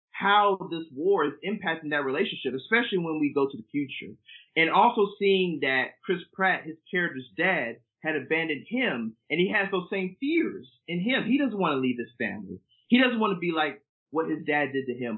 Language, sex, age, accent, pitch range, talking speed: English, male, 30-49, American, 145-200 Hz, 210 wpm